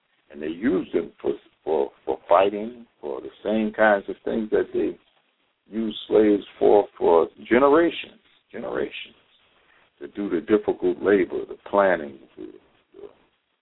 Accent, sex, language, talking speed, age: American, male, English, 140 wpm, 60-79